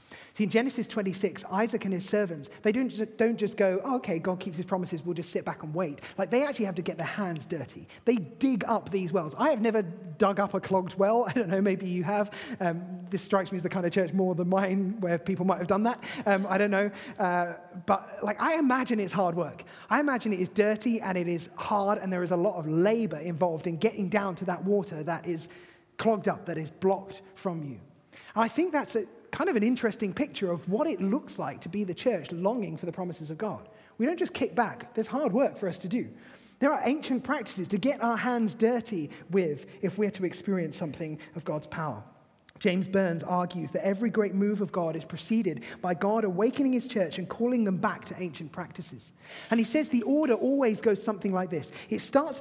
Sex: male